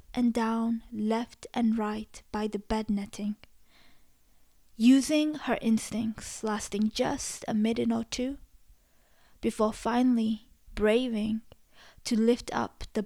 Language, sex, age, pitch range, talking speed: English, female, 20-39, 210-250 Hz, 115 wpm